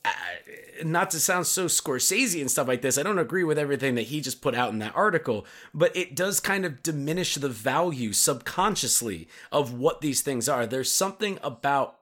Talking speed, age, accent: 195 wpm, 30-49, American